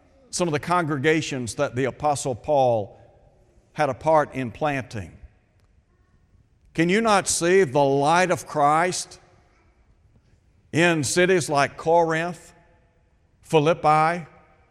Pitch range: 115-180 Hz